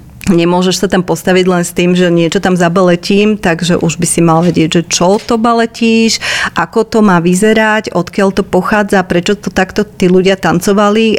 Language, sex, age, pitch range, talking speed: Slovak, female, 40-59, 170-210 Hz, 175 wpm